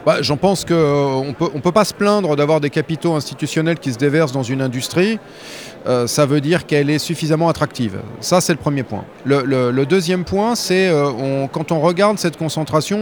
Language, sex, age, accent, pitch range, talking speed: French, male, 40-59, French, 145-185 Hz, 215 wpm